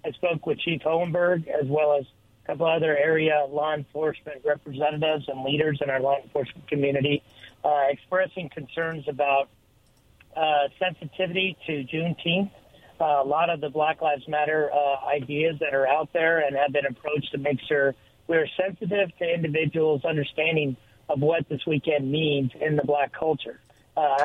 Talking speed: 165 wpm